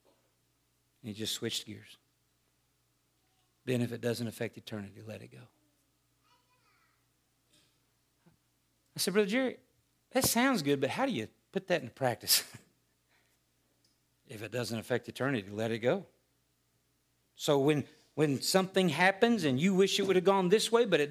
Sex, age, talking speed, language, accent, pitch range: male, 50-69, 150 wpm, English, American, 115-195 Hz